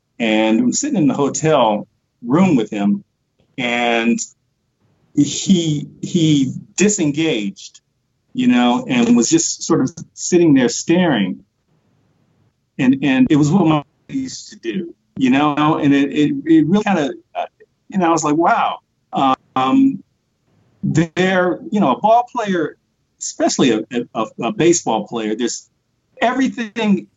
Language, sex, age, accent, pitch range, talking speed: English, male, 50-69, American, 135-220 Hz, 135 wpm